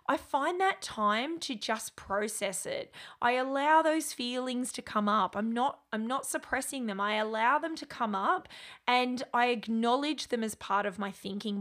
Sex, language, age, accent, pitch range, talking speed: female, English, 20-39, Australian, 205-275 Hz, 185 wpm